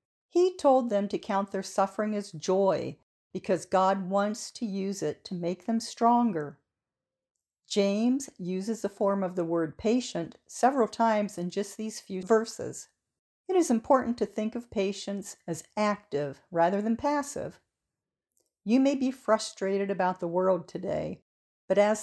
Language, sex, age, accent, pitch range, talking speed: English, female, 50-69, American, 180-225 Hz, 155 wpm